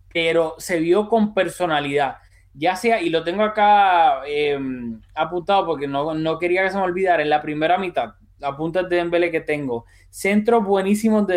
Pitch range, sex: 150-195 Hz, male